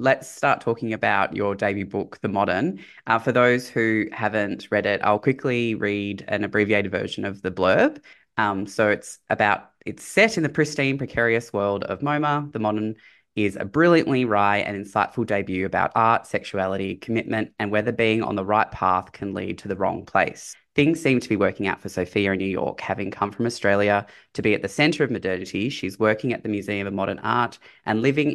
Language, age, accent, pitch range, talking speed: English, 20-39, Australian, 100-125 Hz, 205 wpm